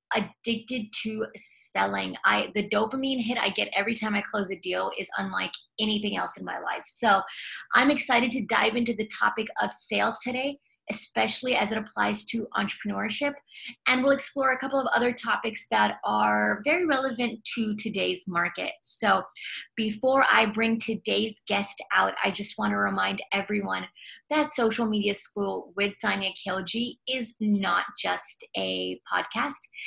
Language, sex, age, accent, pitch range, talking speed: English, female, 30-49, American, 205-240 Hz, 160 wpm